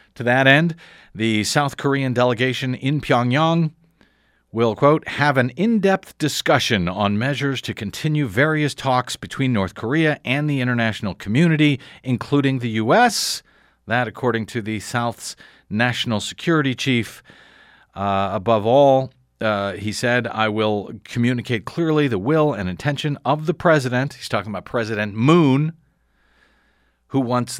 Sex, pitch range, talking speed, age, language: male, 110-145 Hz, 135 wpm, 50-69, English